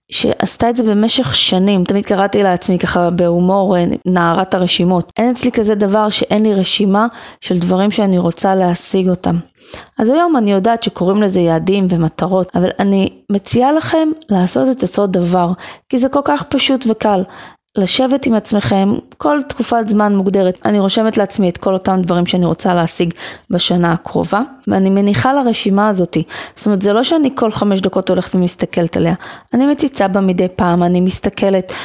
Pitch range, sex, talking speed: 180-225 Hz, female, 165 wpm